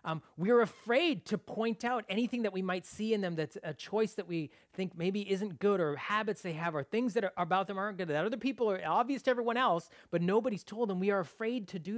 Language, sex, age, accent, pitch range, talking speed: English, male, 30-49, American, 145-190 Hz, 260 wpm